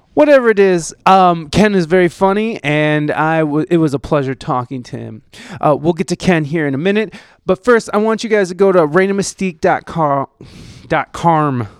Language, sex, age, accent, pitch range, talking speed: English, male, 20-39, American, 145-190 Hz, 190 wpm